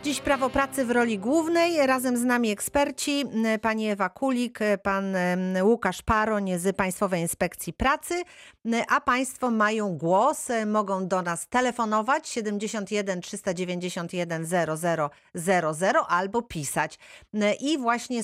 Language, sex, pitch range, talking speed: Polish, female, 175-235 Hz, 115 wpm